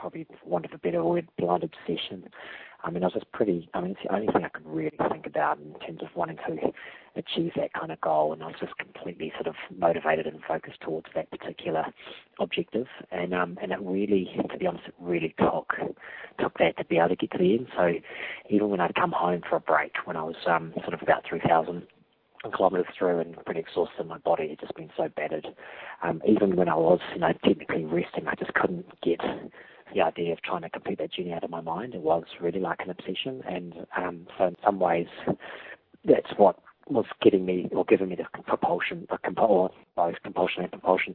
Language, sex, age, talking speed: English, male, 40-59, 215 wpm